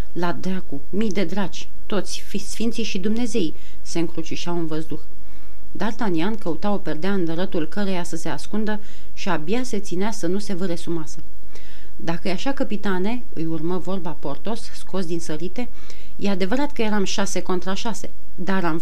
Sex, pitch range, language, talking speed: female, 170-225 Hz, Romanian, 165 wpm